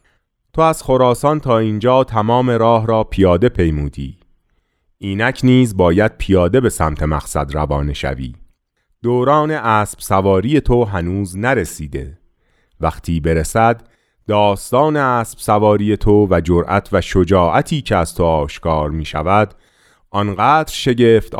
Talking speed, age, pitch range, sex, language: 120 wpm, 30-49, 85-120 Hz, male, Persian